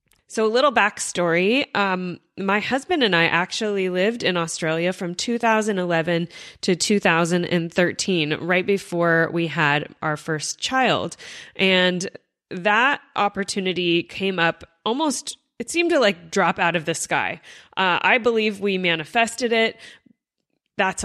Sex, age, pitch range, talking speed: female, 20-39, 175-225 Hz, 130 wpm